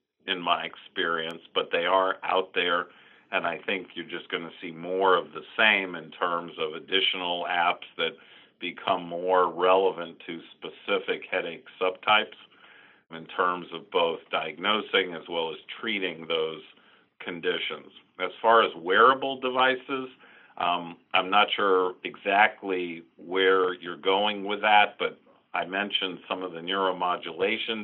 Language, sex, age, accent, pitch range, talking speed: English, male, 50-69, American, 90-105 Hz, 140 wpm